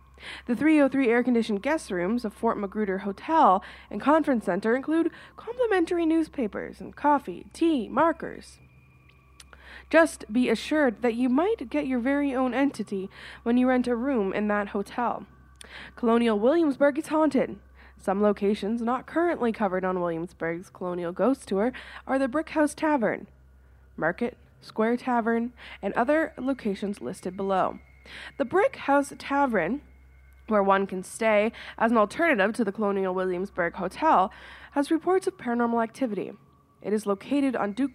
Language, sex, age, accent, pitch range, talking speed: English, female, 20-39, American, 195-280 Hz, 145 wpm